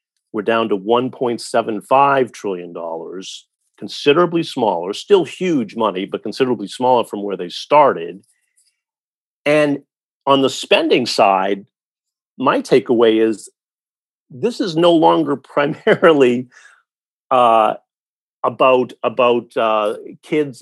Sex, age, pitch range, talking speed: male, 50-69, 110-150 Hz, 100 wpm